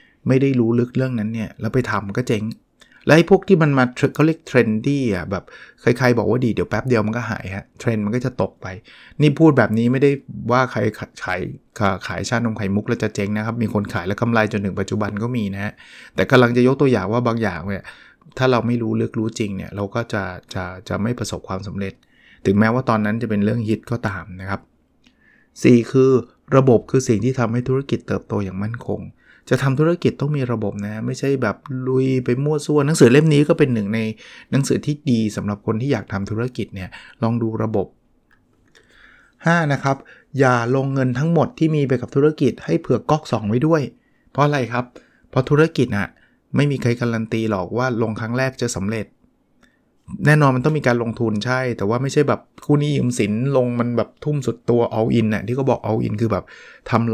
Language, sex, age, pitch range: English, male, 20-39, 105-130 Hz